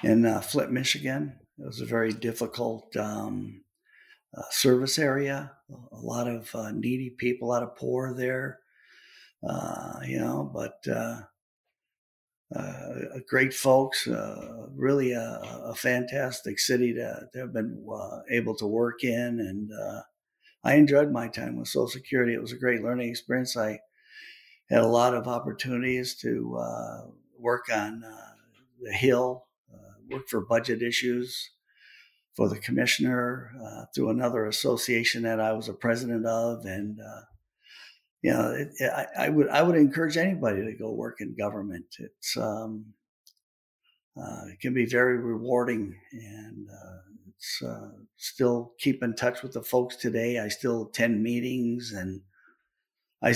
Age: 60-79